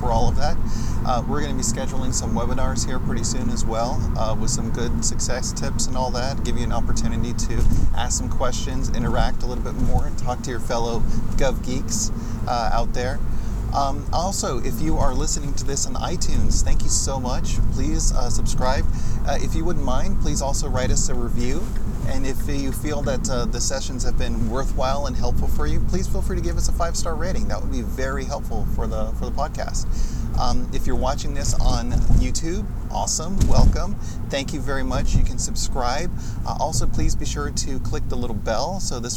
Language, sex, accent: English, male, American